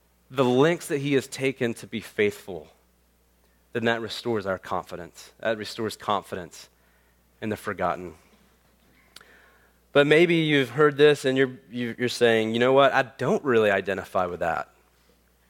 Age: 30-49